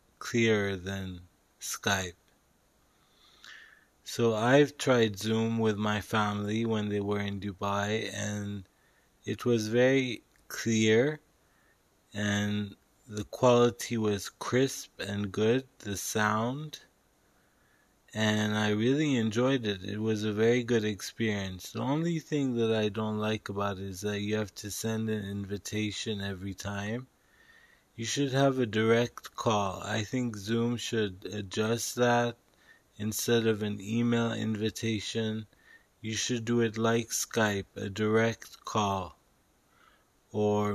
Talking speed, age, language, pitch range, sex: 125 wpm, 20-39, English, 105-120 Hz, male